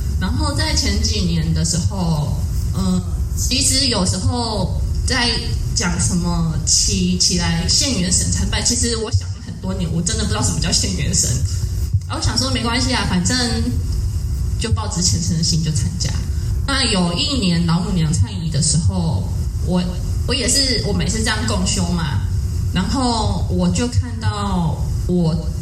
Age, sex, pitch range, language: 20-39, female, 85-95 Hz, Chinese